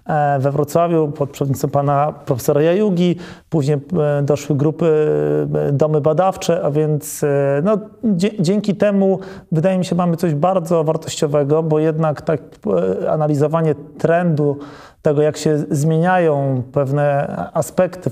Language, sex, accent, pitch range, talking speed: Polish, male, native, 145-165 Hz, 120 wpm